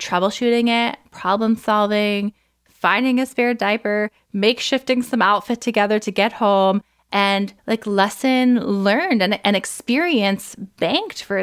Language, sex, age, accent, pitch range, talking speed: English, female, 20-39, American, 195-240 Hz, 125 wpm